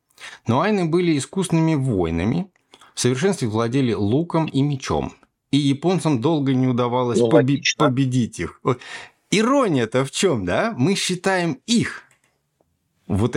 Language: Russian